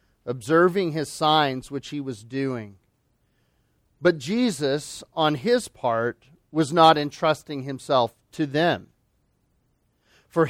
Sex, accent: male, American